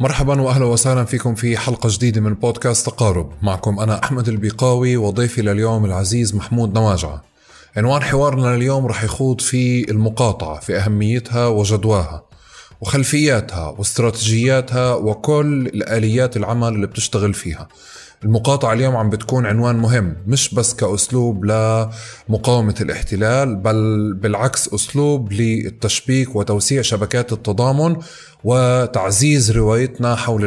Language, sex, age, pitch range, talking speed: Arabic, male, 20-39, 105-125 Hz, 115 wpm